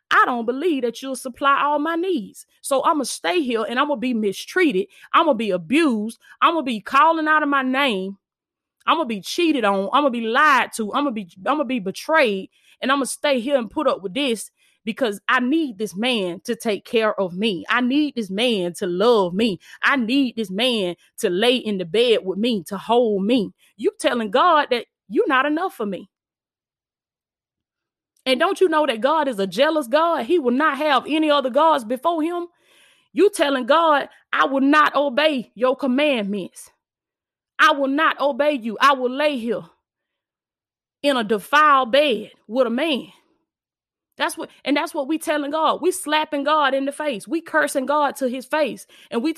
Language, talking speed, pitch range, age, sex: English, 210 wpm, 225-300 Hz, 20-39, female